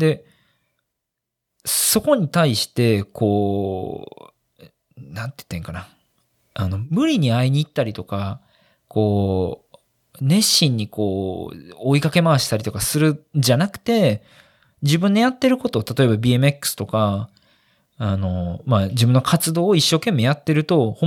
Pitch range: 110-165 Hz